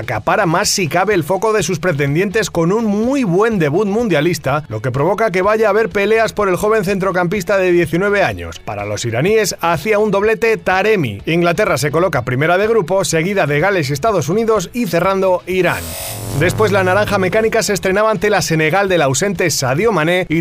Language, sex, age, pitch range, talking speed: Spanish, male, 30-49, 160-210 Hz, 195 wpm